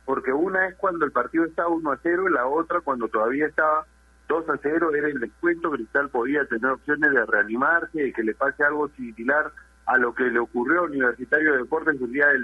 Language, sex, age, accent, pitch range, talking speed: Spanish, male, 40-59, Argentinian, 115-160 Hz, 215 wpm